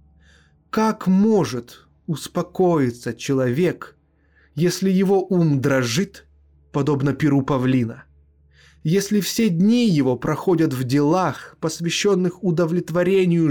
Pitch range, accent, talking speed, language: 120-175 Hz, native, 90 wpm, Russian